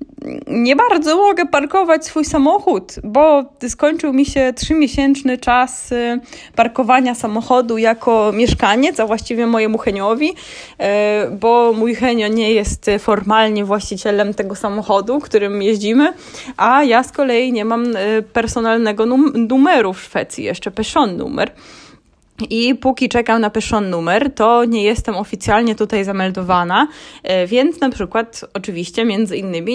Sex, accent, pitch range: female, native, 205-260 Hz